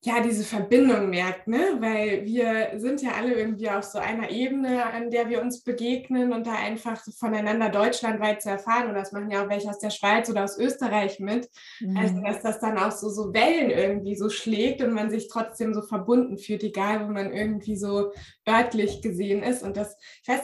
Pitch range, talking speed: 215-250 Hz, 210 wpm